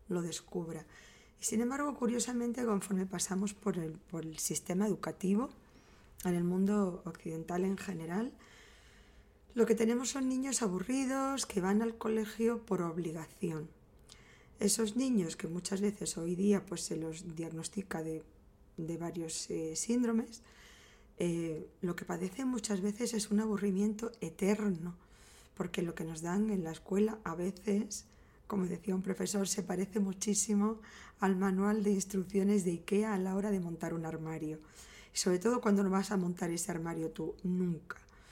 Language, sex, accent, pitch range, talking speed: Spanish, female, Spanish, 175-210 Hz, 155 wpm